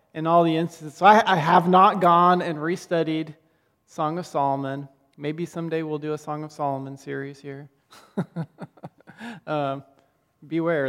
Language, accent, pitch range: English, American, 150-195 Hz